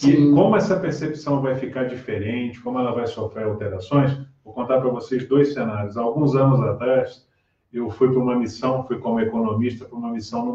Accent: Brazilian